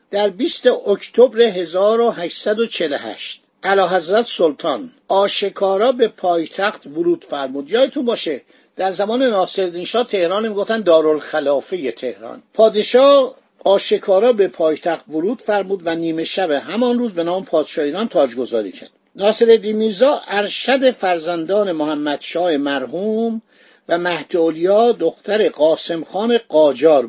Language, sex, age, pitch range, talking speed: Persian, male, 60-79, 165-230 Hz, 110 wpm